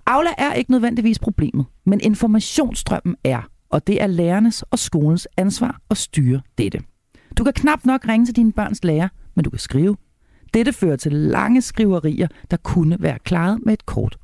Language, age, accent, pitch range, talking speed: Danish, 40-59, native, 165-225 Hz, 180 wpm